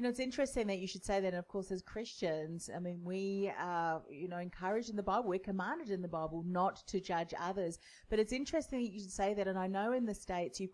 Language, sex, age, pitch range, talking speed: English, female, 30-49, 175-200 Hz, 270 wpm